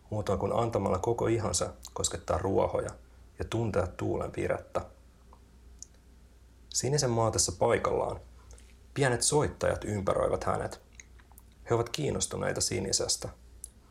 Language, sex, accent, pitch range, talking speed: Finnish, male, native, 70-110 Hz, 100 wpm